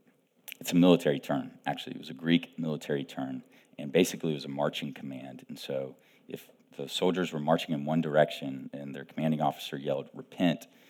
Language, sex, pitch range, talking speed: English, male, 75-85 Hz, 185 wpm